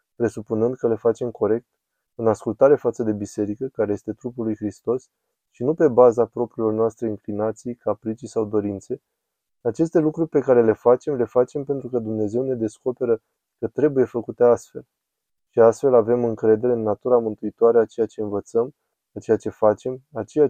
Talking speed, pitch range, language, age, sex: 175 wpm, 110-125 Hz, Romanian, 20-39, male